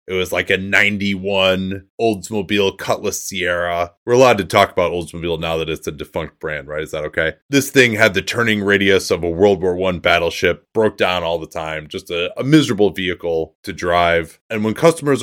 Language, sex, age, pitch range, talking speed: English, male, 30-49, 90-120 Hz, 200 wpm